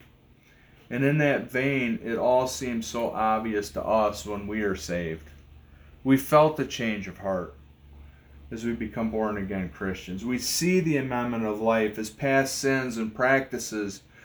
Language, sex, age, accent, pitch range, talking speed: English, male, 30-49, American, 110-135 Hz, 155 wpm